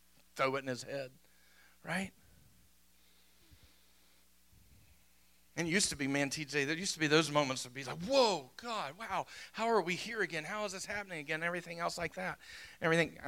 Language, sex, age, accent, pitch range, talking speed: English, male, 40-59, American, 115-160 Hz, 180 wpm